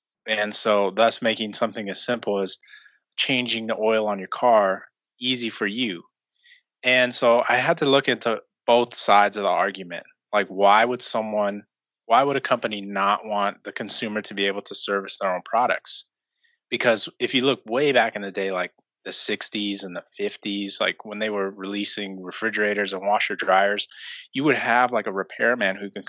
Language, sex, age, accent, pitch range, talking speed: English, male, 20-39, American, 100-115 Hz, 185 wpm